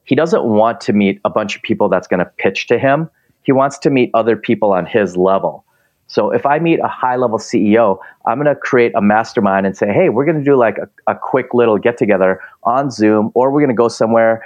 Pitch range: 105-130 Hz